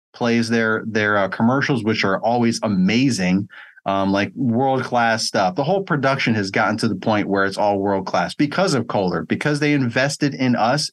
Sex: male